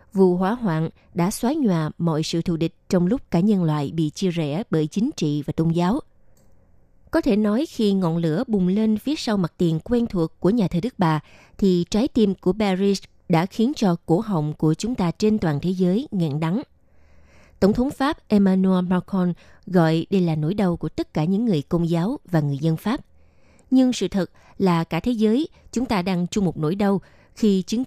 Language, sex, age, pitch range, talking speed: Vietnamese, female, 20-39, 165-215 Hz, 215 wpm